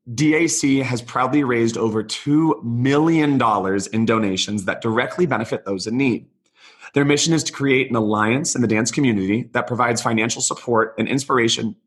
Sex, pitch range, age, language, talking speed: male, 110-140 Hz, 30-49, English, 160 wpm